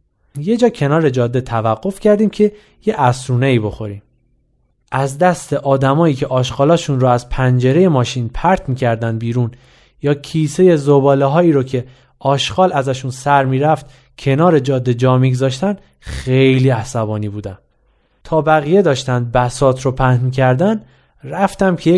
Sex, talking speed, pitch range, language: male, 135 wpm, 125-175 Hz, Persian